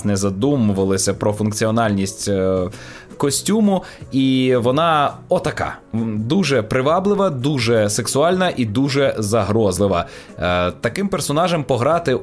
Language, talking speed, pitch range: Ukrainian, 90 wpm, 100-140 Hz